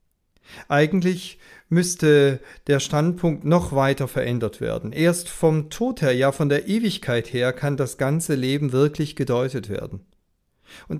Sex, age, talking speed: male, 40-59, 135 wpm